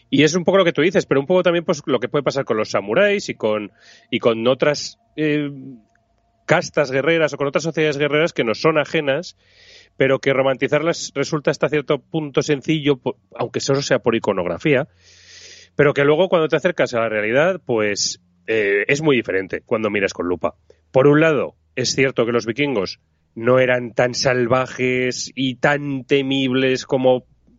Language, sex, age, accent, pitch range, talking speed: Spanish, male, 30-49, Spanish, 110-150 Hz, 185 wpm